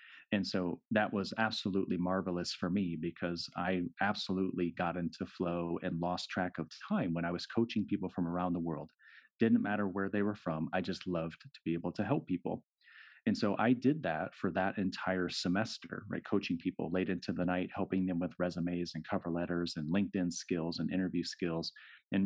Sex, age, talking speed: male, 30-49, 195 wpm